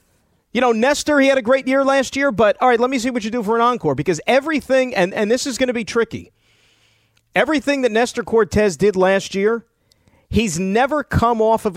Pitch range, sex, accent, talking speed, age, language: 150-225 Hz, male, American, 225 wpm, 40-59, English